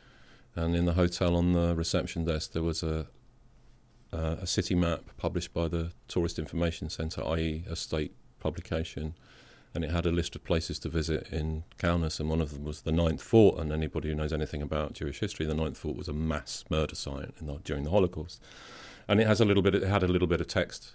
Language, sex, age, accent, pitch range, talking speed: English, male, 40-59, British, 80-95 Hz, 225 wpm